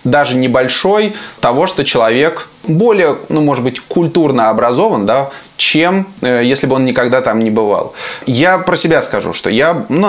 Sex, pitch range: male, 130-170 Hz